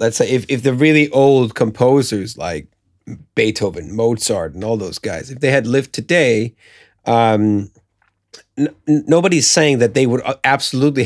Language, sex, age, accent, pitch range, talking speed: English, male, 30-49, American, 105-130 Hz, 145 wpm